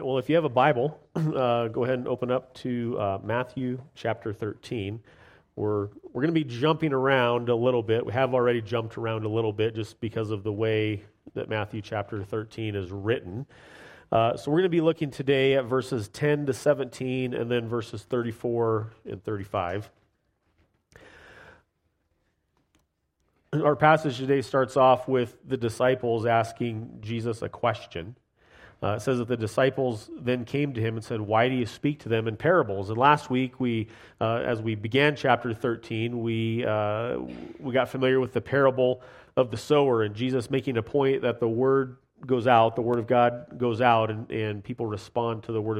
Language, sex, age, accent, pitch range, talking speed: English, male, 40-59, American, 110-130 Hz, 185 wpm